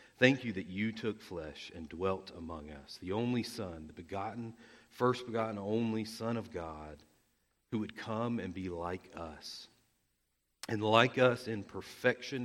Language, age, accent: English, 40-59, American